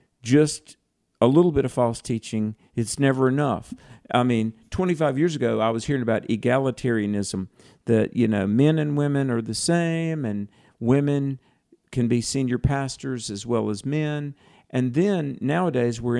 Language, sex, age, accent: English, male, 50-69, American